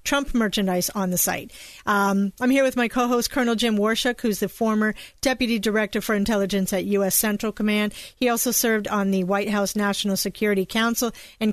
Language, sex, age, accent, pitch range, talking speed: English, female, 40-59, American, 205-240 Hz, 185 wpm